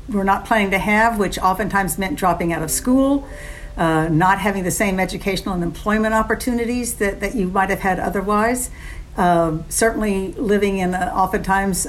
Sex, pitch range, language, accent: female, 185-220 Hz, English, American